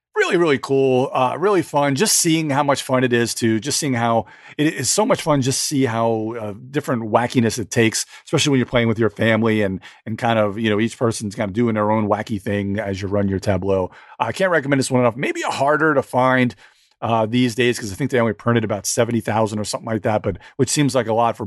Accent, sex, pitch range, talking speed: American, male, 110-135 Hz, 260 wpm